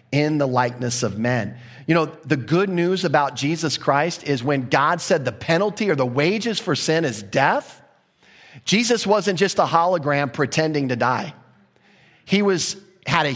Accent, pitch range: American, 120-155 Hz